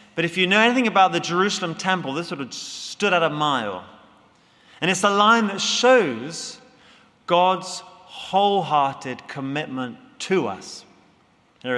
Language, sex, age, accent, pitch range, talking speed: English, male, 30-49, British, 155-210 Hz, 145 wpm